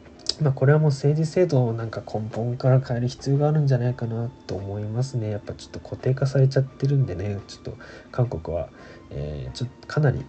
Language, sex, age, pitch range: Japanese, male, 20-39, 110-135 Hz